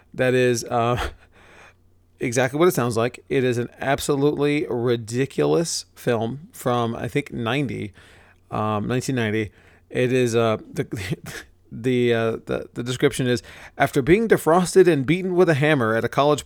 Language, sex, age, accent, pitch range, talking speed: English, male, 30-49, American, 110-140 Hz, 130 wpm